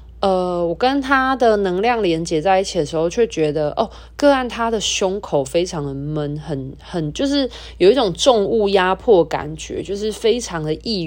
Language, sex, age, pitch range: Chinese, female, 20-39, 155-210 Hz